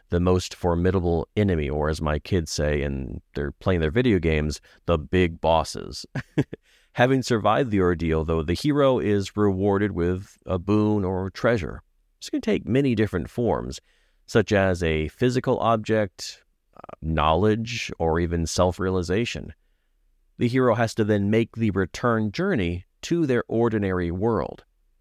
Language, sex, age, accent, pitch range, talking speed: English, male, 40-59, American, 85-110 Hz, 150 wpm